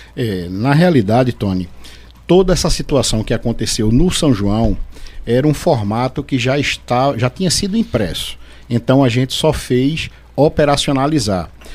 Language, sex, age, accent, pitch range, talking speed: Portuguese, male, 50-69, Brazilian, 115-145 Hz, 145 wpm